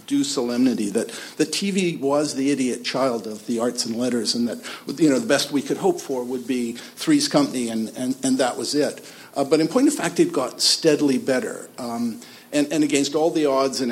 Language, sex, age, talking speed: English, male, 50-69, 225 wpm